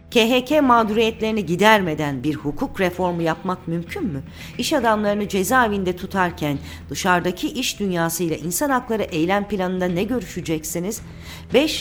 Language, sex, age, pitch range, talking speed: Turkish, female, 40-59, 160-210 Hz, 115 wpm